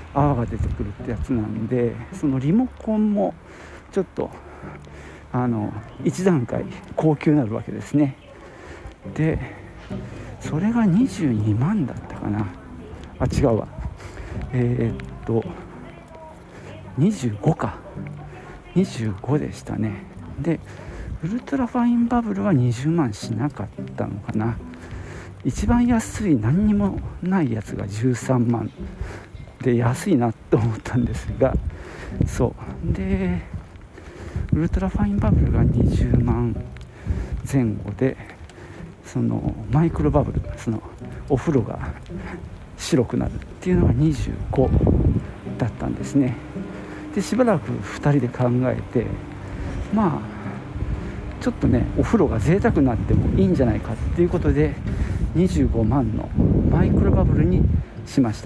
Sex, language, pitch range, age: male, Japanese, 100-145 Hz, 50-69